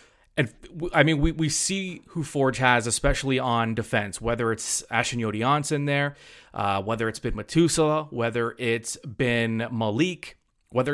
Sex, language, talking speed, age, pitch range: male, English, 150 wpm, 30-49, 115-155 Hz